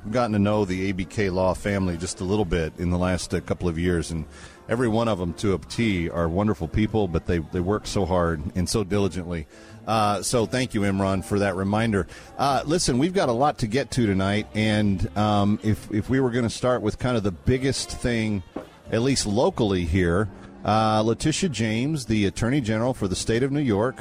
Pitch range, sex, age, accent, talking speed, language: 95-120 Hz, male, 40-59, American, 215 wpm, English